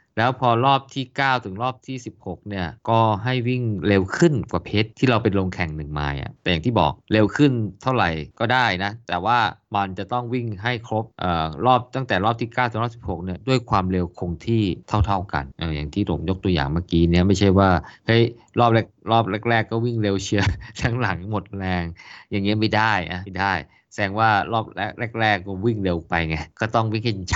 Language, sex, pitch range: Thai, male, 95-125 Hz